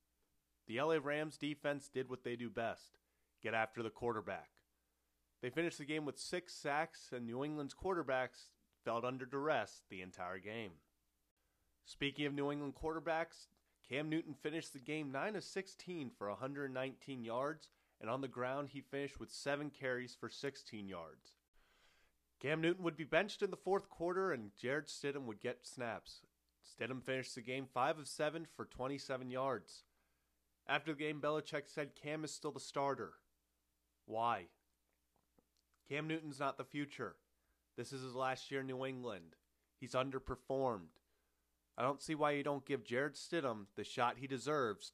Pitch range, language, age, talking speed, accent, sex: 105-150 Hz, English, 30-49, 165 wpm, American, male